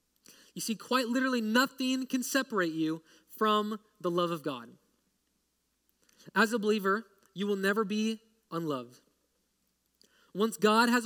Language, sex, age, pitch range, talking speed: English, male, 20-39, 160-215 Hz, 130 wpm